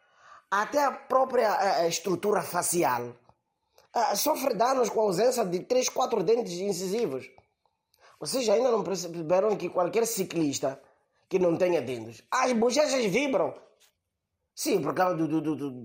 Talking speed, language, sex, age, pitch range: 145 wpm, Portuguese, male, 20-39, 160-260 Hz